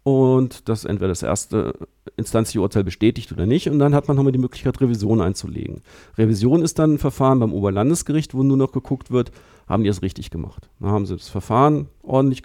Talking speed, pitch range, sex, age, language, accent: 205 wpm, 105-135 Hz, male, 50-69, German, German